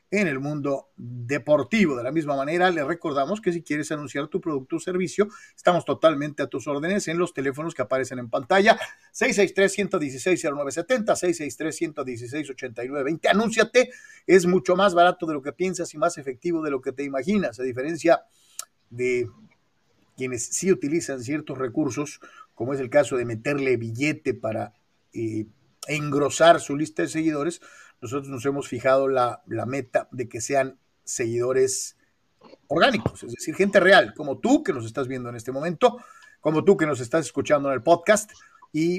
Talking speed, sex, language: 165 wpm, male, Spanish